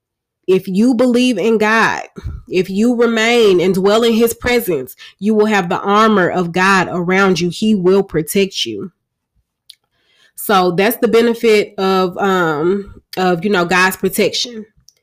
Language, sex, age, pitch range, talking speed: English, female, 20-39, 185-220 Hz, 150 wpm